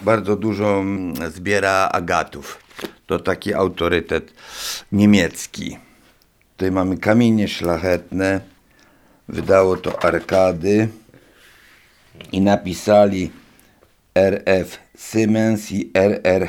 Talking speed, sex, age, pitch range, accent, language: 75 wpm, male, 60-79, 95-110 Hz, native, Polish